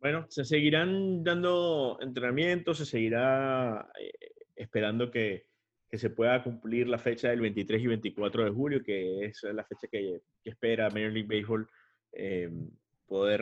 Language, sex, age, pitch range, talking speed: English, male, 30-49, 105-130 Hz, 150 wpm